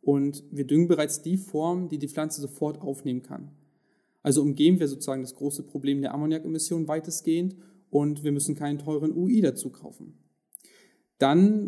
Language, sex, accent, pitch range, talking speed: German, male, German, 145-180 Hz, 160 wpm